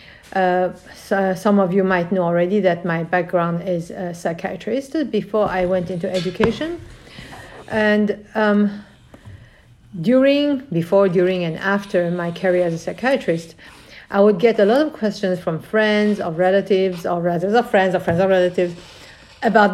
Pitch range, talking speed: 175-210 Hz, 155 wpm